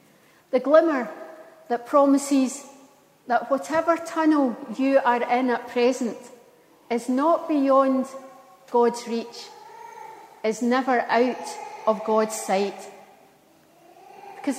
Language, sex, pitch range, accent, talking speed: English, female, 230-295 Hz, British, 100 wpm